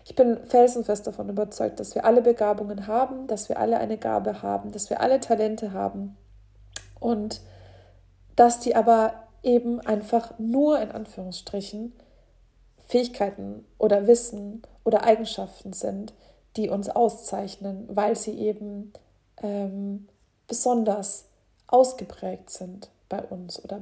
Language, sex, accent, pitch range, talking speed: German, female, German, 200-235 Hz, 125 wpm